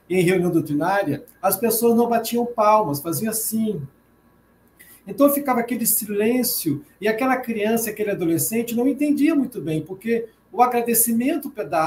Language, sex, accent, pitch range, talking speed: Portuguese, male, Brazilian, 195-255 Hz, 135 wpm